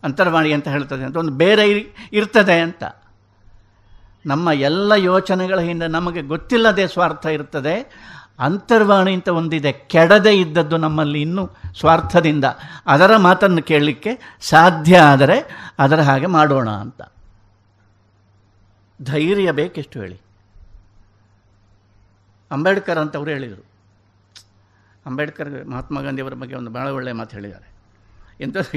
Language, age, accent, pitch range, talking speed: Kannada, 60-79, native, 100-165 Hz, 105 wpm